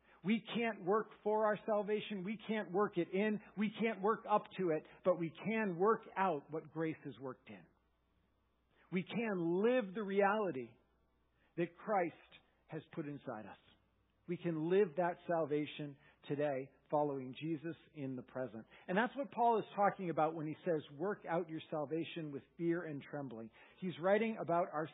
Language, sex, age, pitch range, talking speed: English, male, 50-69, 145-205 Hz, 170 wpm